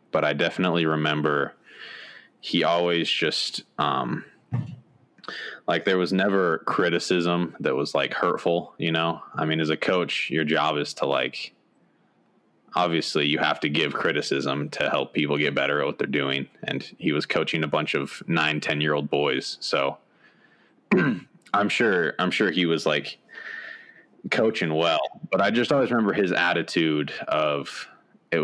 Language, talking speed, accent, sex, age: English, 160 wpm, American, male, 20-39